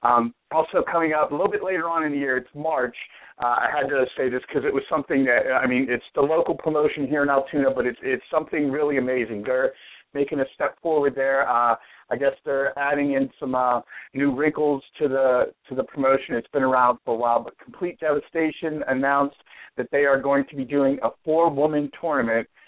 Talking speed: 215 wpm